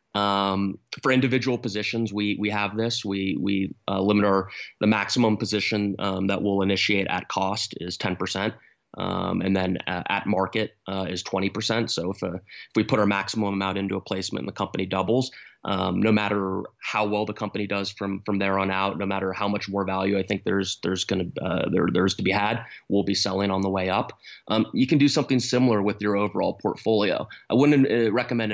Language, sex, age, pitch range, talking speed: English, male, 20-39, 95-110 Hz, 205 wpm